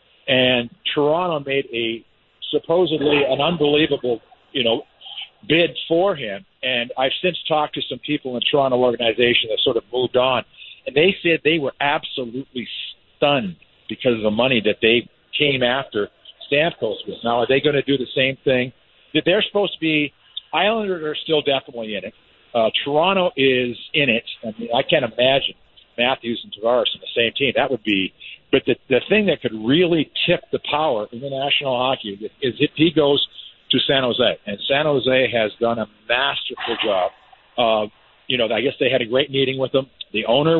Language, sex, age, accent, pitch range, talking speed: English, male, 50-69, American, 120-150 Hz, 190 wpm